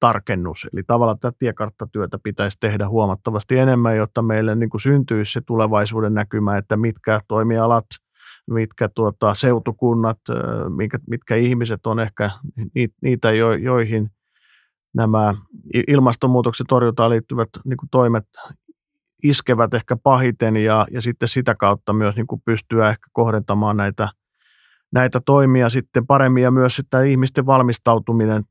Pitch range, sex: 110-130 Hz, male